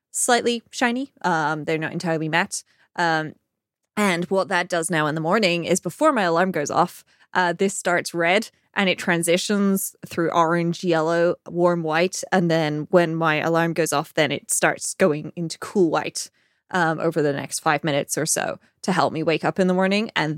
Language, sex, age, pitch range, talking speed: English, female, 20-39, 160-195 Hz, 190 wpm